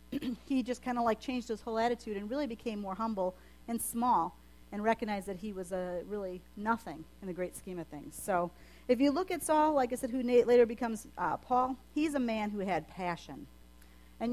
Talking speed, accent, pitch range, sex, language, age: 210 wpm, American, 175-260 Hz, female, English, 40-59